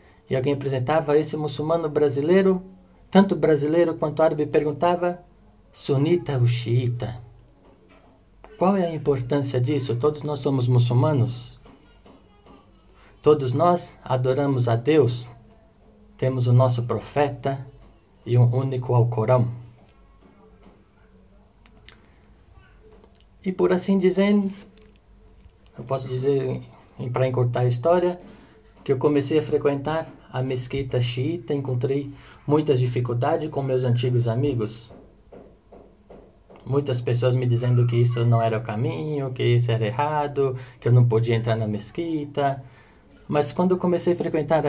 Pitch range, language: 120-150 Hz, Portuguese